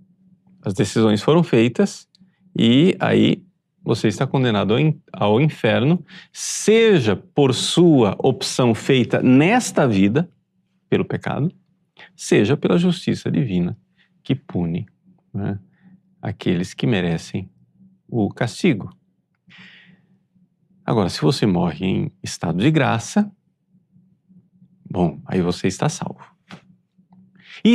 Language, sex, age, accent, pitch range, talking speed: Portuguese, male, 40-59, Brazilian, 140-185 Hz, 100 wpm